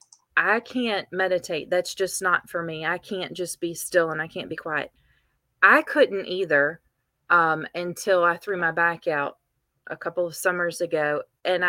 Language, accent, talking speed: English, American, 175 wpm